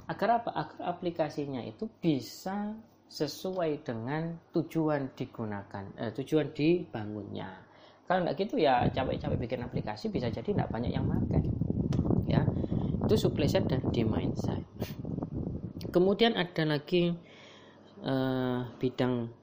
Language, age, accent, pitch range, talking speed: Indonesian, 20-39, native, 120-155 Hz, 115 wpm